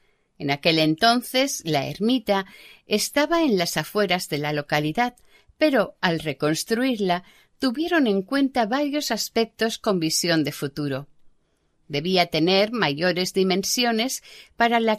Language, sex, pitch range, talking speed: Spanish, female, 160-230 Hz, 120 wpm